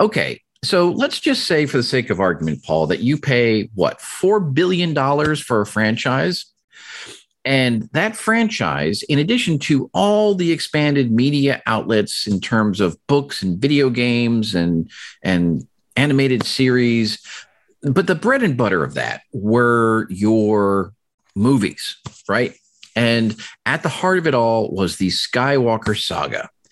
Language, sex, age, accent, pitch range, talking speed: English, male, 50-69, American, 105-155 Hz, 145 wpm